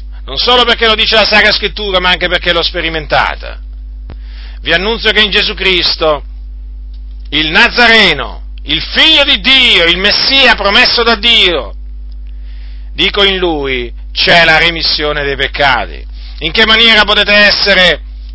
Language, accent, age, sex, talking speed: Italian, native, 50-69, male, 140 wpm